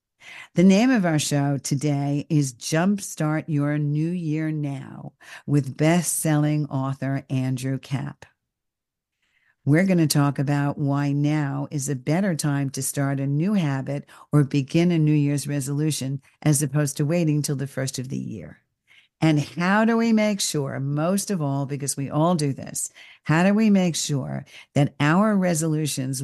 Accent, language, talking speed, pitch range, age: American, English, 160 wpm, 140-170 Hz, 50-69